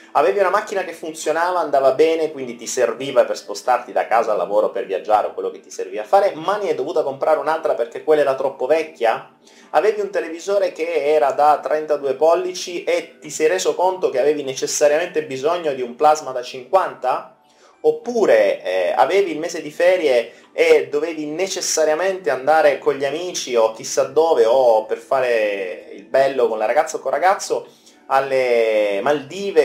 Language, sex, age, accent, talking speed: Italian, male, 30-49, native, 180 wpm